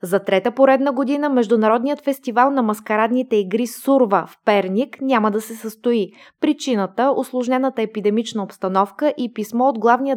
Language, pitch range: Bulgarian, 195-245 Hz